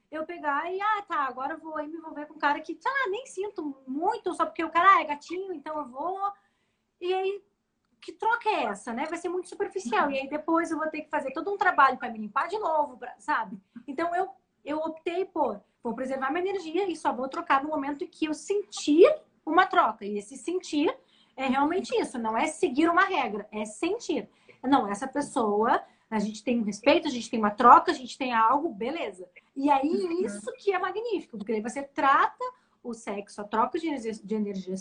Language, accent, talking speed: English, Brazilian, 220 wpm